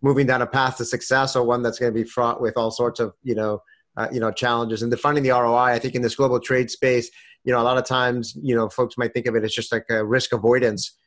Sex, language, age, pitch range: male, English, 30-49, 120-140 Hz